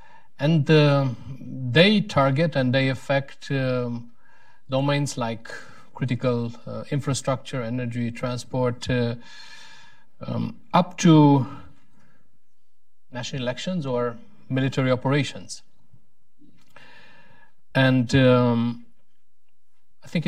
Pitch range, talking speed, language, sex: 120-145 Hz, 85 wpm, English, male